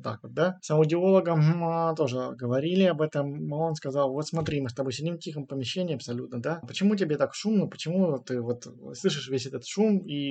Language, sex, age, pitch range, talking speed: Russian, male, 20-39, 125-160 Hz, 200 wpm